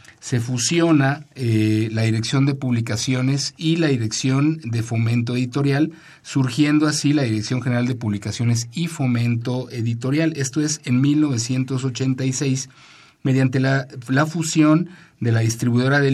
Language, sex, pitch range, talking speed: Spanish, male, 115-145 Hz, 130 wpm